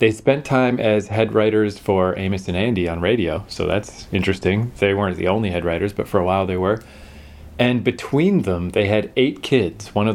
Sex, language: male, English